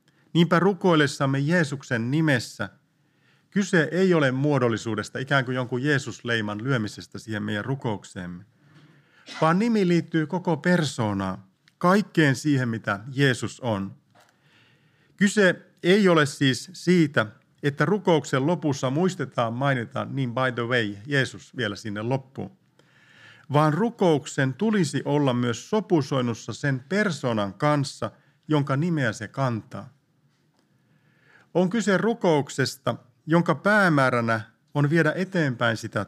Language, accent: Finnish, native